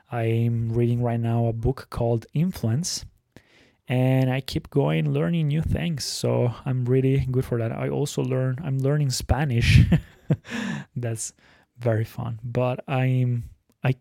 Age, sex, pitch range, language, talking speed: 20-39, male, 115-145 Hz, Italian, 140 wpm